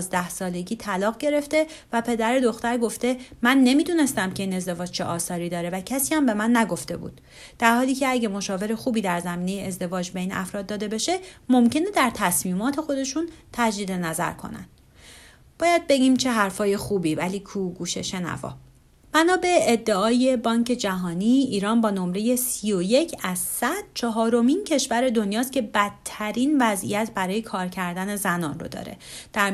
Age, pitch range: 30-49, 185-255 Hz